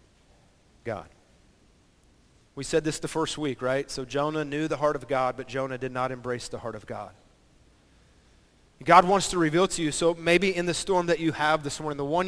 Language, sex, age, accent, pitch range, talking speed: English, male, 30-49, American, 130-170 Hz, 205 wpm